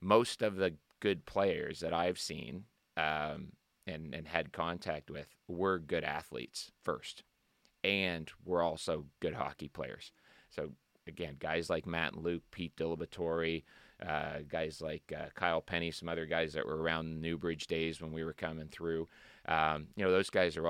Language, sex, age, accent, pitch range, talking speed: English, male, 30-49, American, 80-90 Hz, 170 wpm